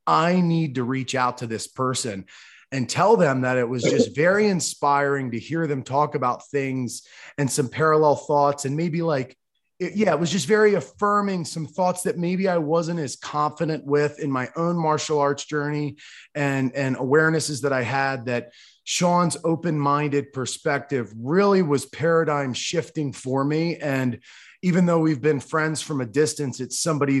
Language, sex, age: English, male, 30-49